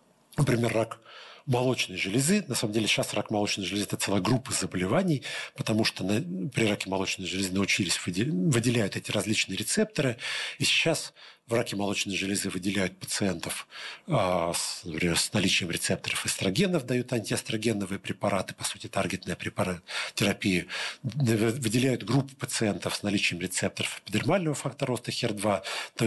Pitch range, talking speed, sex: 100-135 Hz, 135 wpm, male